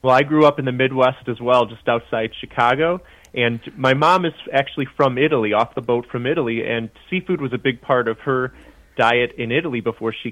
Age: 30-49